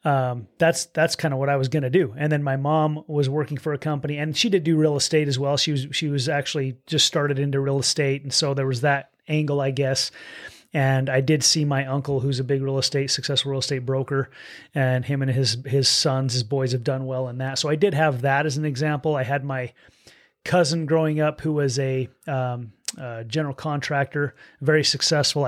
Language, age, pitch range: English, 30-49, 135-155 Hz